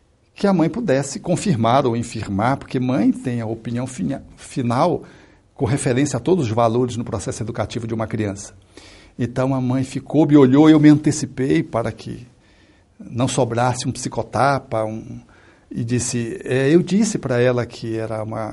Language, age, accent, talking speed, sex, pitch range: Portuguese, 60-79, Brazilian, 170 wpm, male, 120-160 Hz